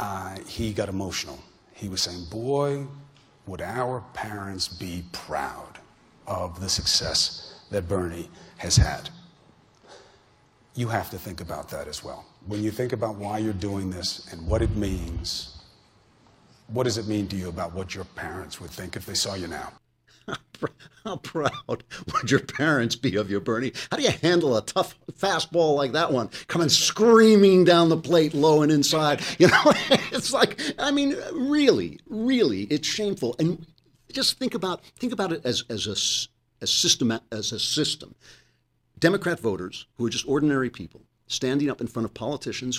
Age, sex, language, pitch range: 50-69, male, English, 100-140 Hz